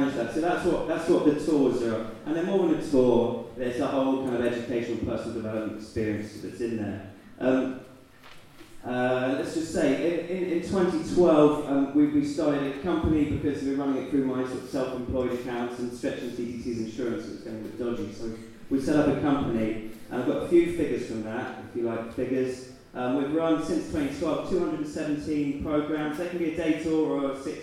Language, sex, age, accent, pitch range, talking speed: English, male, 20-39, British, 115-145 Hz, 200 wpm